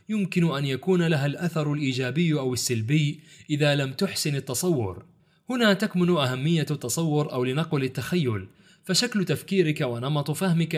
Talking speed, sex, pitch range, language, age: 130 wpm, male, 135-175 Hz, Arabic, 30-49